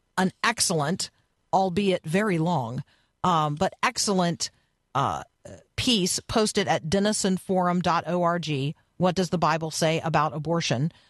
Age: 50-69